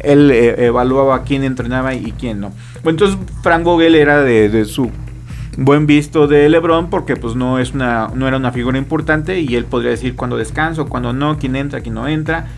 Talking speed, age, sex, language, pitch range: 195 wpm, 40-59, male, Spanish, 120-160 Hz